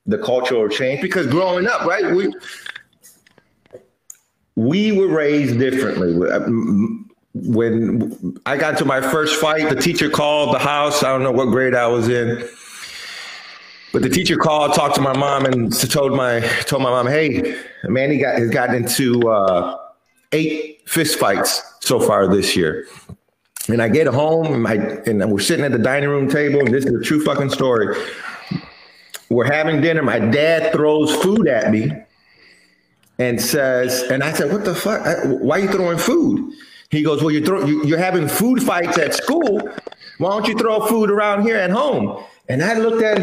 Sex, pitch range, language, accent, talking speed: male, 130-210 Hz, English, American, 180 wpm